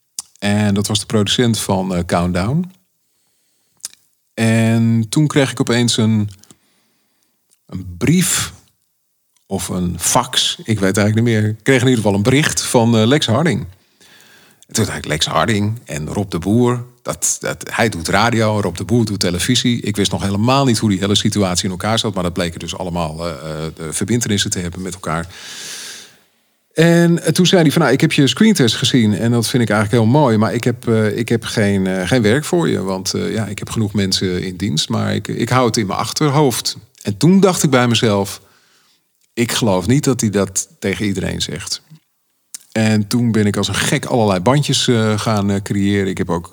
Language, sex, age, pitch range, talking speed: Dutch, male, 40-59, 95-120 Hz, 200 wpm